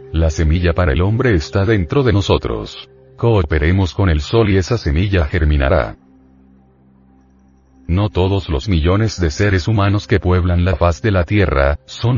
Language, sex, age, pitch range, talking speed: Spanish, male, 40-59, 75-110 Hz, 160 wpm